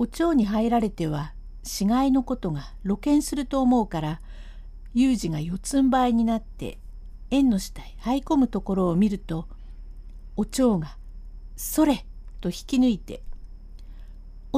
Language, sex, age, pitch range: Japanese, female, 50-69, 155-255 Hz